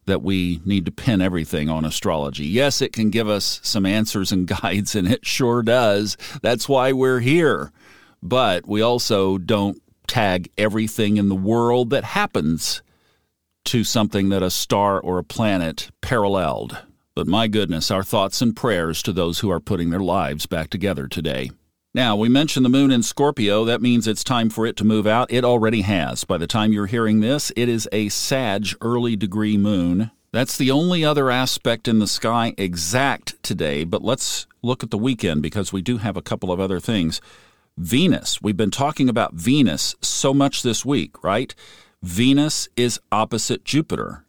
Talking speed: 180 wpm